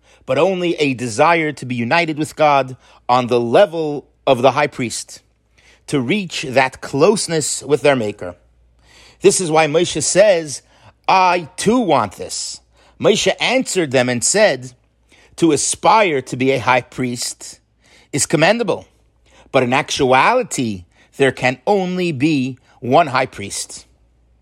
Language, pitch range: English, 130-170 Hz